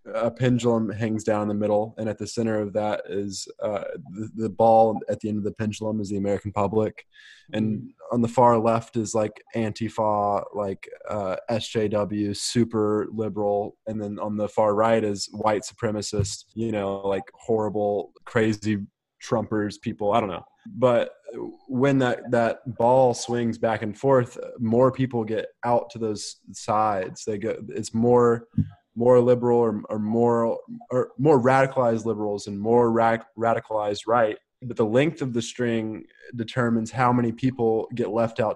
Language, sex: English, male